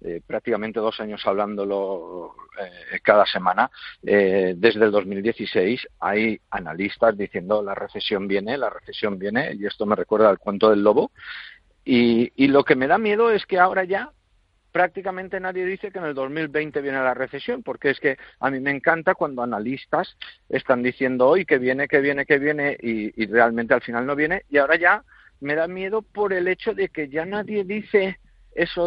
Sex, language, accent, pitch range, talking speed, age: male, Spanish, Spanish, 115-155 Hz, 185 wpm, 50-69